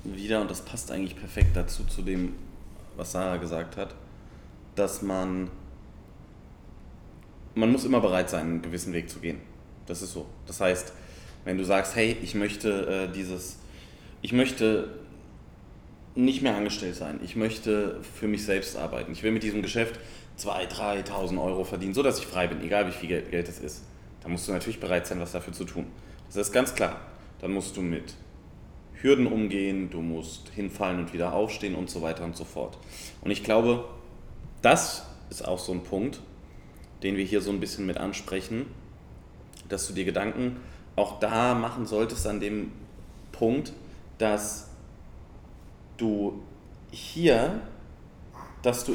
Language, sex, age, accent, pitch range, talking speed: German, male, 30-49, German, 90-105 Hz, 165 wpm